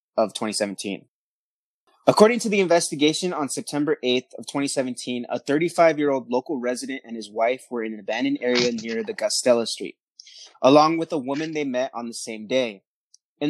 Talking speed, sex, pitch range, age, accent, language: 170 wpm, male, 125-155 Hz, 20-39, American, English